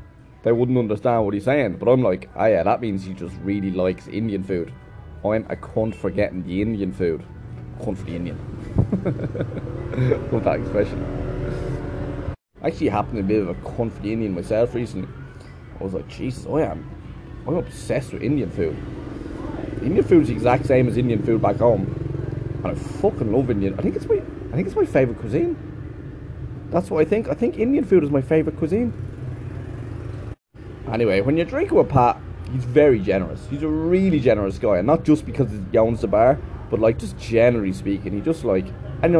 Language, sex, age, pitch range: English, male, 20-39, 100-130 Hz